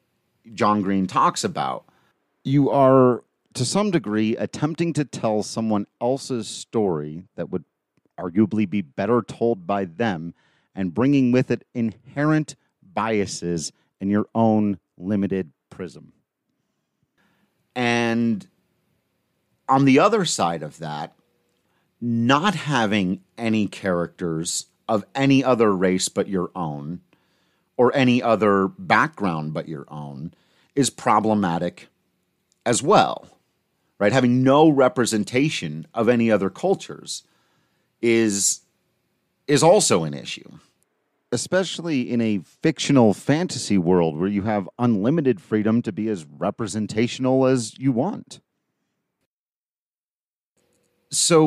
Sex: male